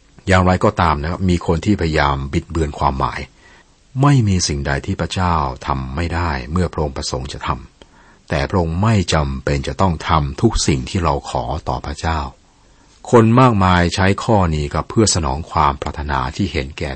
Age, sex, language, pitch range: 60-79, male, Thai, 70-90 Hz